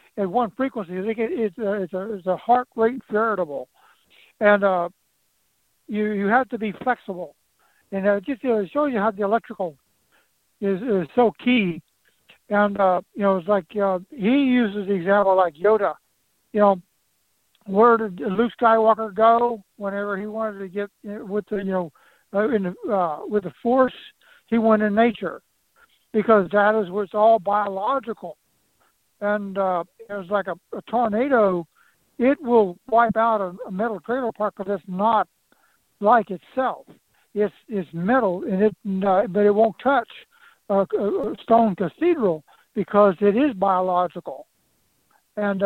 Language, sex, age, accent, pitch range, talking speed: English, male, 60-79, American, 195-225 Hz, 165 wpm